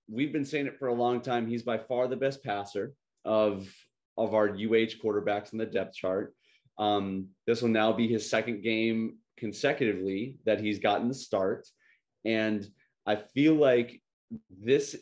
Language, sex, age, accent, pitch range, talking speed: English, male, 30-49, American, 110-135 Hz, 170 wpm